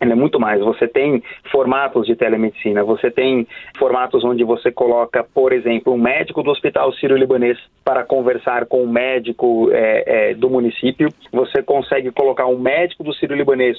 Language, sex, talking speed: Portuguese, male, 155 wpm